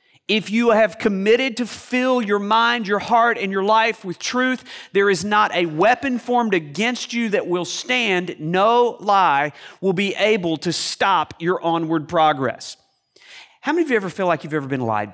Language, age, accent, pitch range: English, 40-59, American, 155-210 Hz